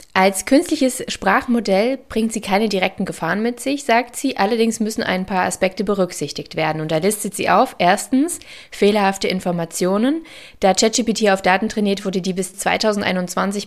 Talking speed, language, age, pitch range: 160 wpm, German, 20-39, 180-225 Hz